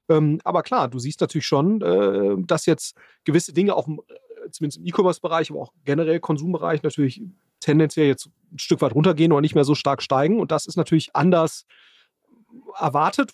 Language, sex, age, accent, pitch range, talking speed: German, male, 30-49, German, 140-175 Hz, 180 wpm